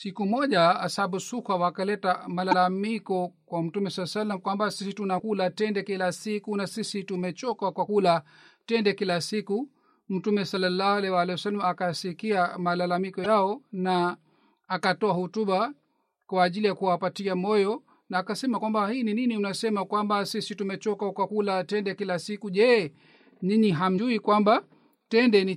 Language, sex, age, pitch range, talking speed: Swahili, male, 40-59, 190-215 Hz, 145 wpm